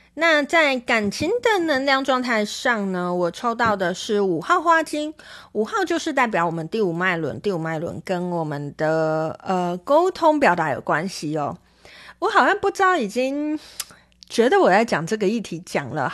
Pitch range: 180-265 Hz